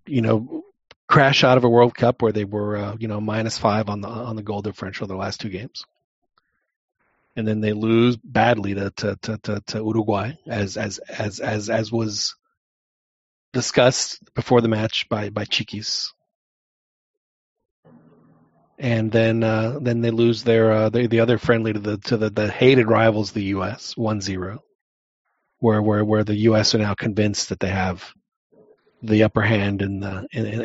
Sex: male